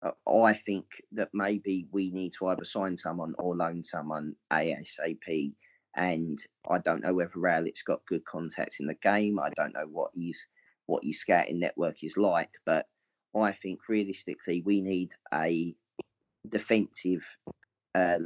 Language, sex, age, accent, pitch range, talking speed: English, male, 30-49, British, 95-135 Hz, 150 wpm